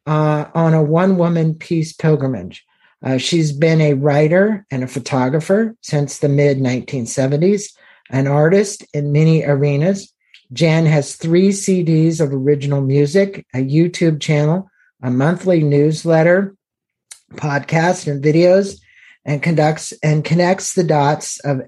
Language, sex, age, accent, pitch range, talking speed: English, male, 50-69, American, 140-175 Hz, 120 wpm